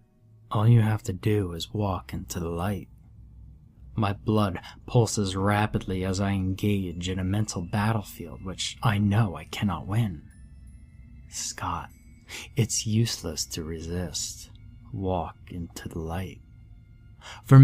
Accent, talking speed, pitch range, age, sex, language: American, 125 wpm, 95-115 Hz, 20-39, male, English